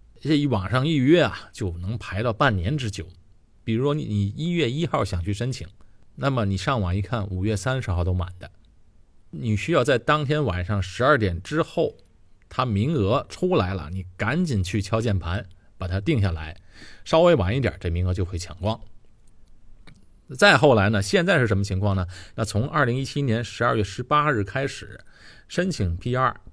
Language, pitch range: Chinese, 95-120 Hz